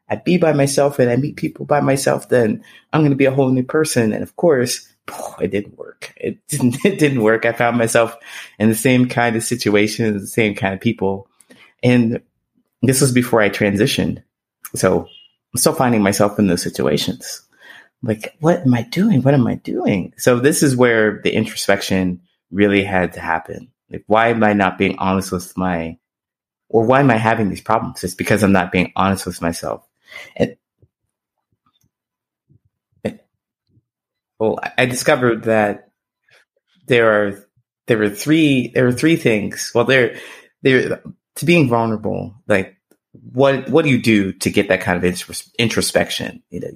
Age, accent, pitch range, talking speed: 20-39, American, 95-125 Hz, 175 wpm